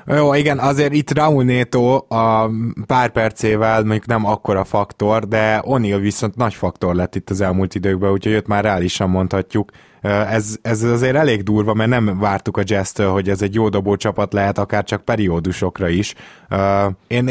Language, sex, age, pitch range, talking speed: Hungarian, male, 20-39, 95-115 Hz, 170 wpm